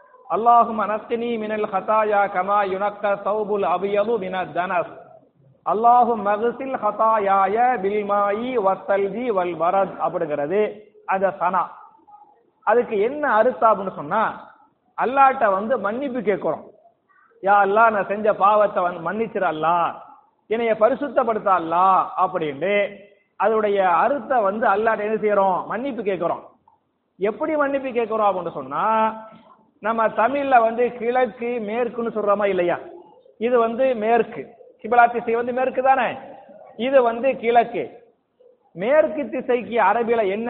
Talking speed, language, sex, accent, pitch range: 140 wpm, English, male, Indian, 205-265 Hz